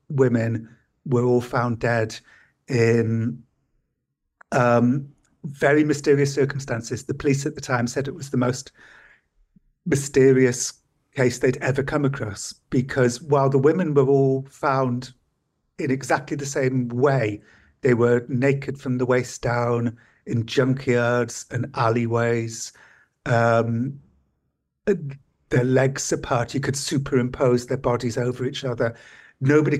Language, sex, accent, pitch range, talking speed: English, male, British, 120-140 Hz, 125 wpm